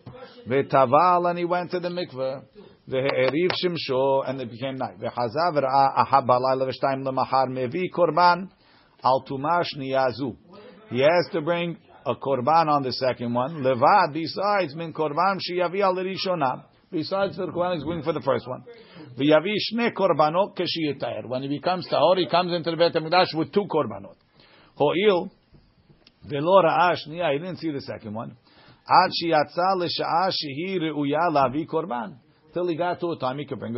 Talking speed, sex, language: 100 wpm, male, English